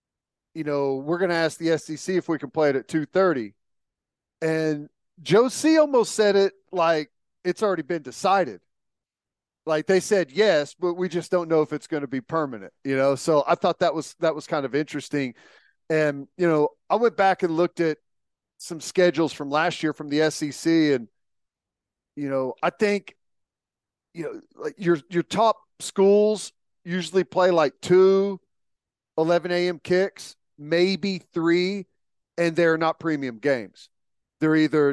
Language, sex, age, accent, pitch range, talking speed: English, male, 40-59, American, 140-180 Hz, 170 wpm